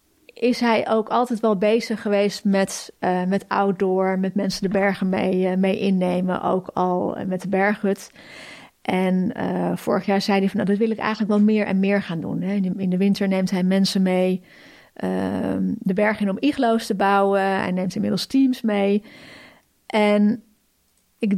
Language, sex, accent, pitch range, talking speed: Dutch, female, Dutch, 195-240 Hz, 180 wpm